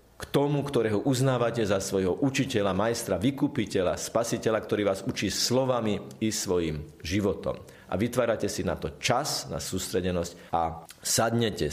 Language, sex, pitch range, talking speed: Slovak, male, 95-130 Hz, 140 wpm